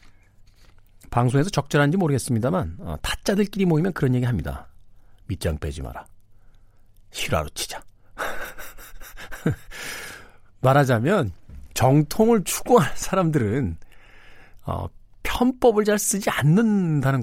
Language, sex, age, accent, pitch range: Korean, male, 50-69, native, 100-160 Hz